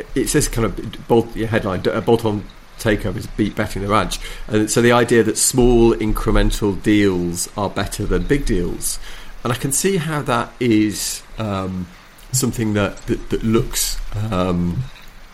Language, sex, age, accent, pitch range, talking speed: English, male, 40-59, British, 95-115 Hz, 160 wpm